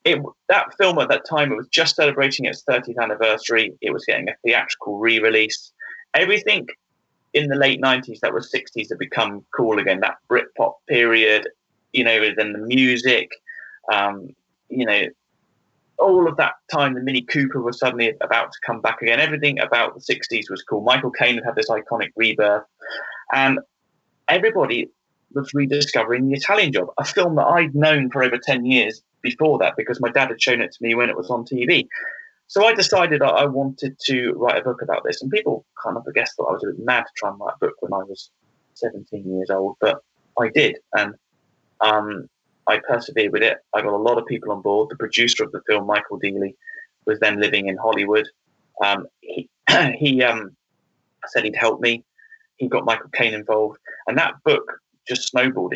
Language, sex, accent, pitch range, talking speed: English, male, British, 115-175 Hz, 200 wpm